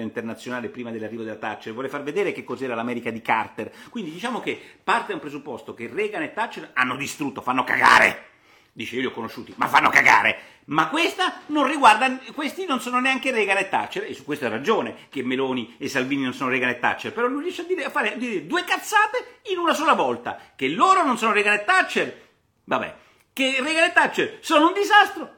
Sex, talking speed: male, 215 wpm